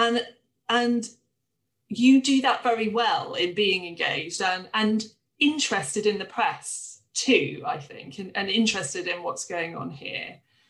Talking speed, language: 150 wpm, English